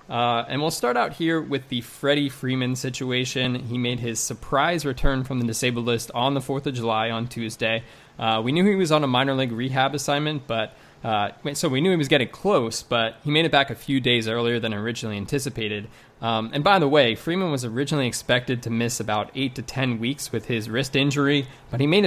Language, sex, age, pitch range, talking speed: English, male, 20-39, 115-145 Hz, 225 wpm